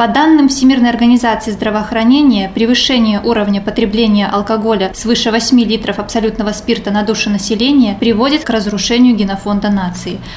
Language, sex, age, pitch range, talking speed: Russian, female, 20-39, 215-255 Hz, 125 wpm